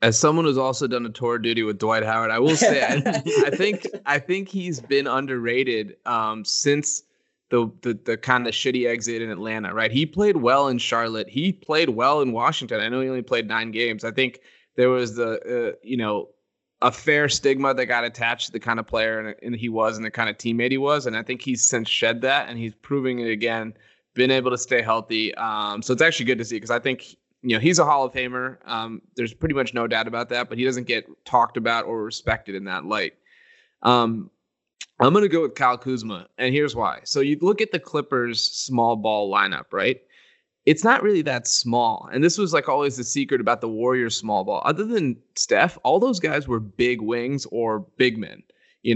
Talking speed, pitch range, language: 225 wpm, 115-140 Hz, English